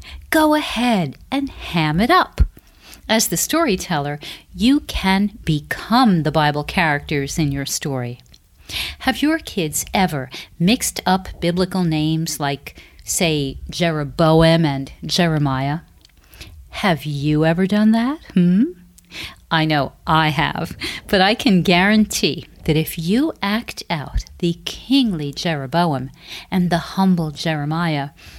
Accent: American